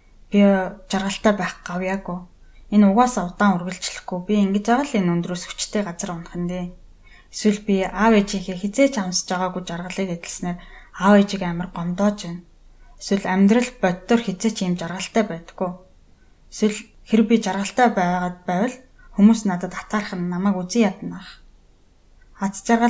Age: 20-39